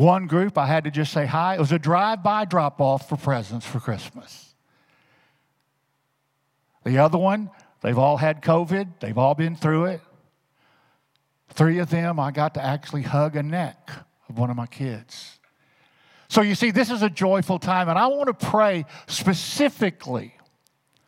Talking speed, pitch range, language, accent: 165 wpm, 135-175 Hz, English, American